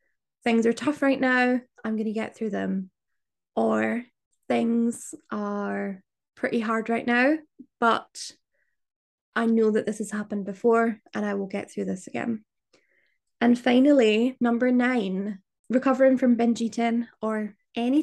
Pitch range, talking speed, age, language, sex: 210-245 Hz, 145 wpm, 20-39, English, female